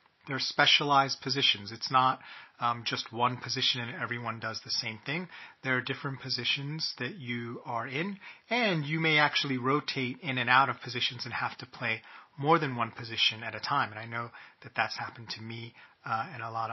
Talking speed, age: 205 wpm, 30-49